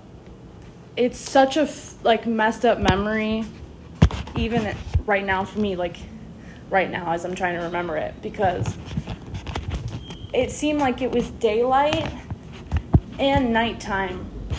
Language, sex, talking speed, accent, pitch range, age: English, female, 125 wpm, American, 195-245 Hz, 20-39